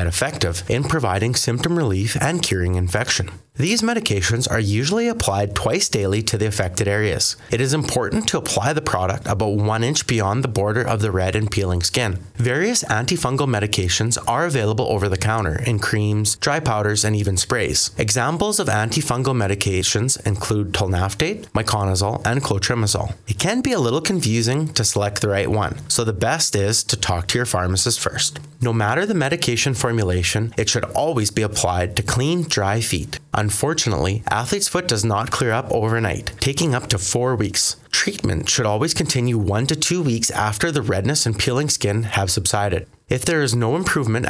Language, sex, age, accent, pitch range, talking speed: English, male, 30-49, American, 105-135 Hz, 175 wpm